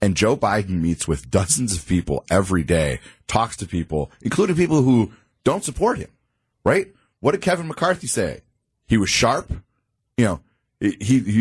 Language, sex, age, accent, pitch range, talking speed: English, male, 30-49, American, 95-130 Hz, 170 wpm